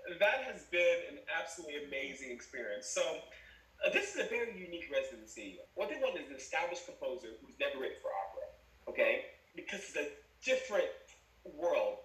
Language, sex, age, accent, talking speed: English, male, 20-39, American, 165 wpm